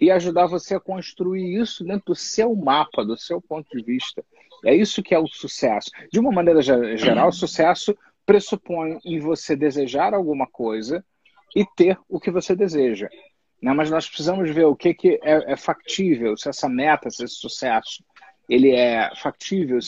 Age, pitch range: 40-59, 145-195 Hz